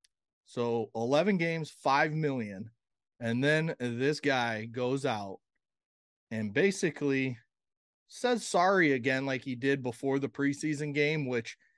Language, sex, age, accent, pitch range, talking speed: English, male, 30-49, American, 120-150 Hz, 120 wpm